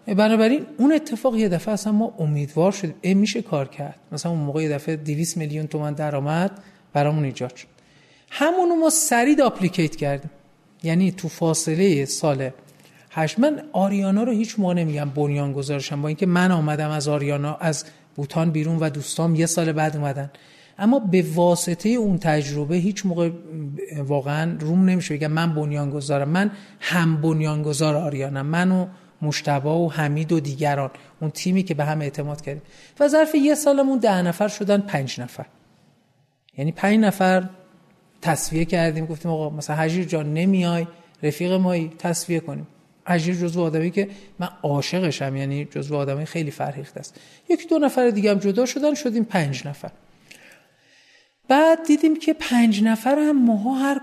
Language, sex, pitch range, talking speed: Persian, male, 150-200 Hz, 155 wpm